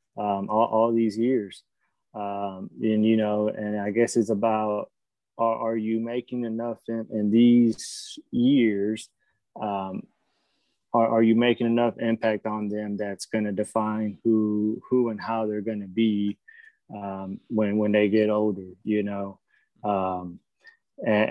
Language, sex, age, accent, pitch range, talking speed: English, male, 20-39, American, 105-120 Hz, 150 wpm